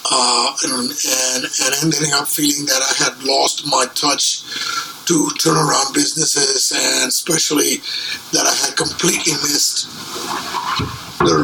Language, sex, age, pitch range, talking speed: English, male, 50-69, 150-180 Hz, 125 wpm